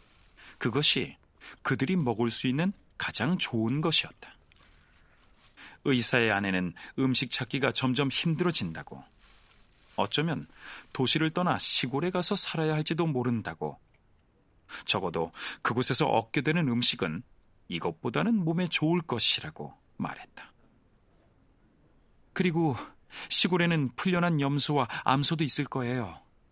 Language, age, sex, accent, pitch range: Korean, 40-59, male, native, 110-165 Hz